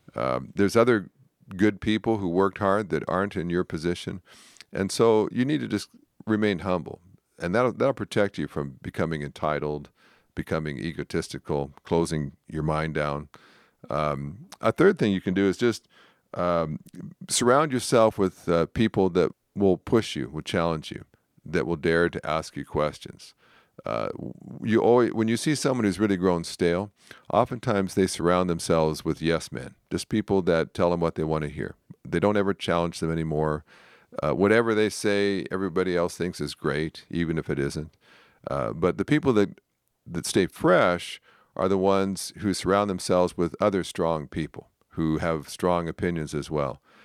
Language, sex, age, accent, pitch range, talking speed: English, male, 50-69, American, 80-100 Hz, 170 wpm